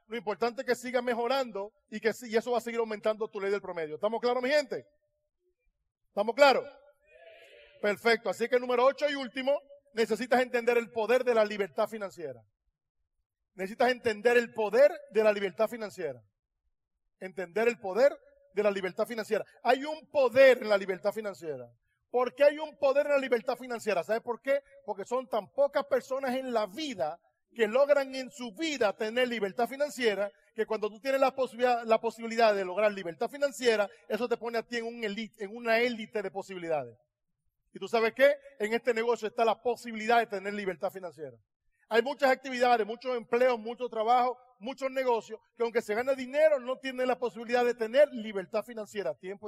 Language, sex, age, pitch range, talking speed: Spanish, male, 40-59, 205-255 Hz, 185 wpm